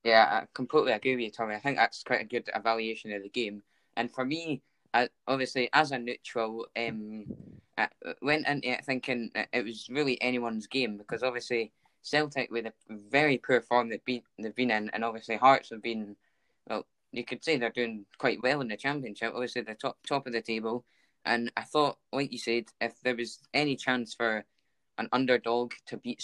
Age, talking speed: 10-29, 200 wpm